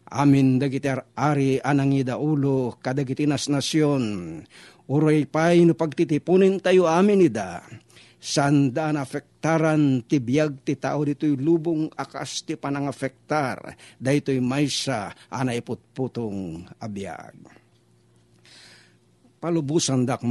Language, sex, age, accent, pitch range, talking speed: Filipino, male, 50-69, native, 120-150 Hz, 95 wpm